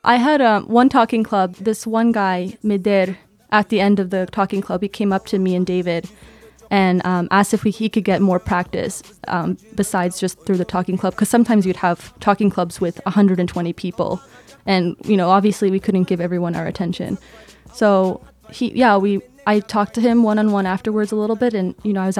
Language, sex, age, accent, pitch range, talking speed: English, female, 20-39, American, 190-225 Hz, 210 wpm